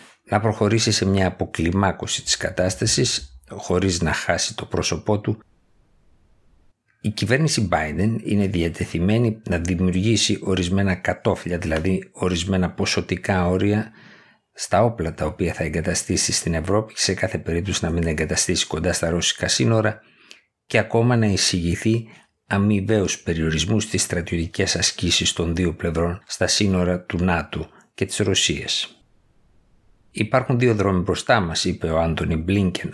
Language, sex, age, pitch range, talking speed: Greek, male, 50-69, 85-105 Hz, 135 wpm